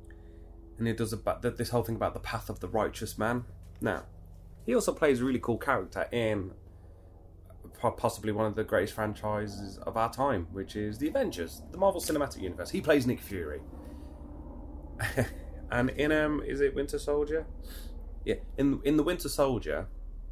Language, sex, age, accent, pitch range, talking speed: English, male, 20-39, British, 85-120 Hz, 170 wpm